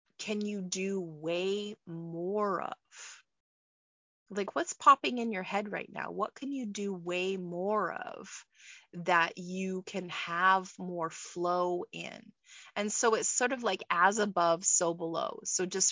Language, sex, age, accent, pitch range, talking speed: English, female, 30-49, American, 175-210 Hz, 150 wpm